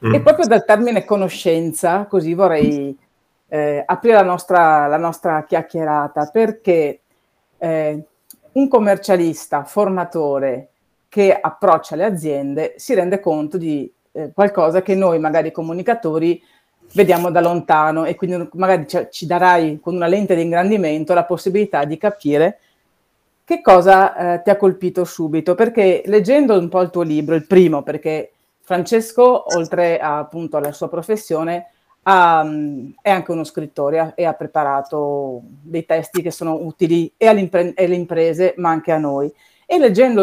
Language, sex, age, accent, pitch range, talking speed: Italian, female, 40-59, native, 155-190 Hz, 140 wpm